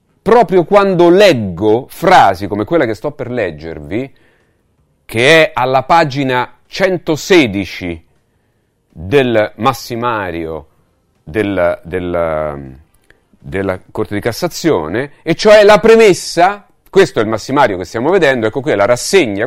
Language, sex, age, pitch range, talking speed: Italian, male, 40-59, 110-175 Hz, 115 wpm